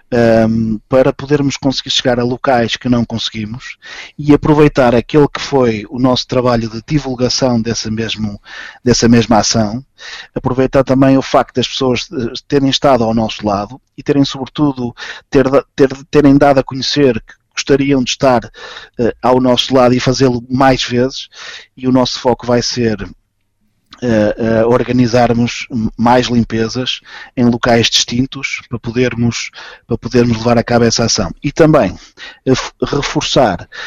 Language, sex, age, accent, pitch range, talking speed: Portuguese, male, 20-39, Portuguese, 115-130 Hz, 145 wpm